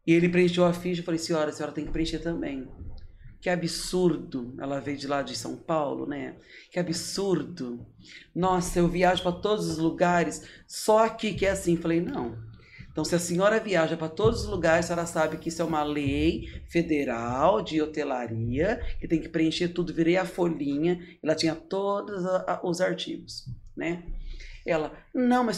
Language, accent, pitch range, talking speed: Portuguese, Brazilian, 155-190 Hz, 180 wpm